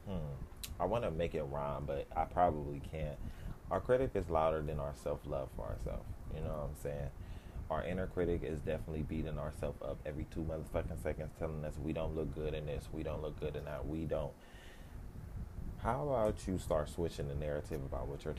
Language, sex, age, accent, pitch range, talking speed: English, male, 20-39, American, 75-95 Hz, 200 wpm